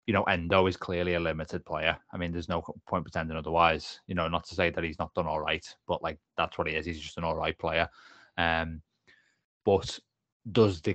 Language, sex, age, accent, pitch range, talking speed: English, male, 20-39, British, 85-100 Hz, 220 wpm